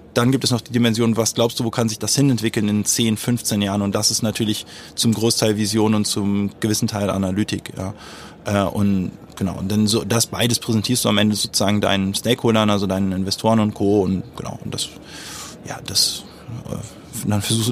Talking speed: 200 wpm